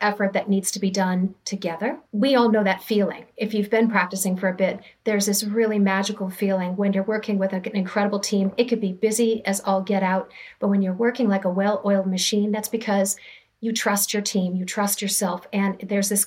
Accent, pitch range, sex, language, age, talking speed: American, 195-225 Hz, female, English, 40-59, 220 wpm